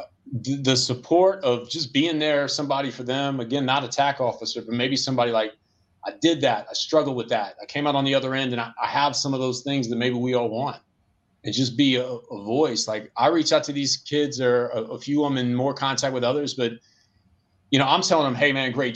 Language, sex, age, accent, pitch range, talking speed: English, male, 30-49, American, 120-150 Hz, 240 wpm